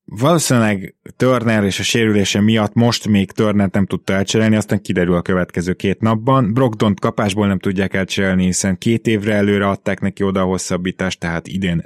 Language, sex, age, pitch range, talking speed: Hungarian, male, 20-39, 95-120 Hz, 170 wpm